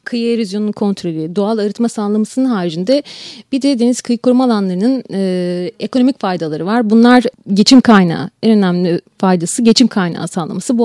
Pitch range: 195-245 Hz